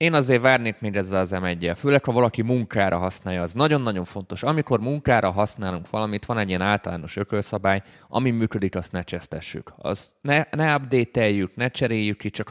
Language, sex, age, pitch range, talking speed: Hungarian, male, 20-39, 90-115 Hz, 180 wpm